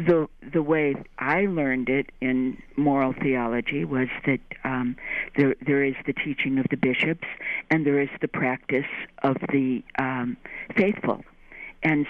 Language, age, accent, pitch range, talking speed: English, 60-79, American, 135-155 Hz, 150 wpm